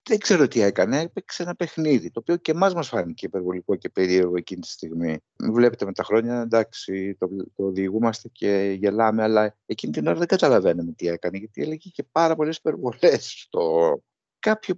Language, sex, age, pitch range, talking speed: Greek, male, 60-79, 100-145 Hz, 185 wpm